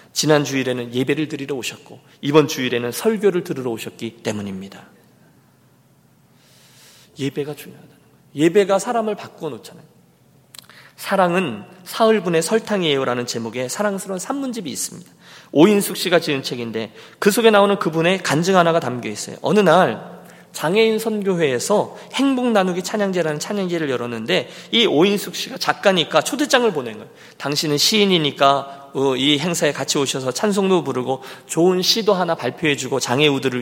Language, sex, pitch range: Korean, male, 145-220 Hz